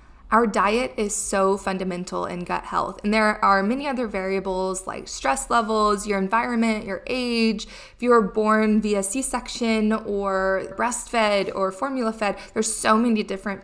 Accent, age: American, 20-39